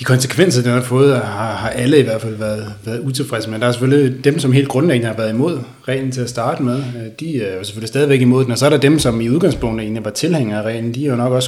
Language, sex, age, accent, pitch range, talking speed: Danish, male, 30-49, native, 110-135 Hz, 275 wpm